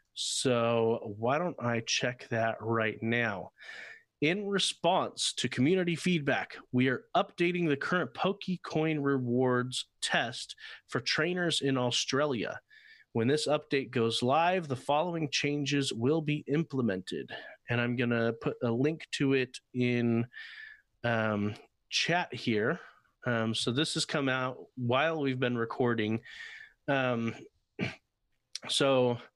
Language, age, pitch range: English, 30-49, 120-160 Hz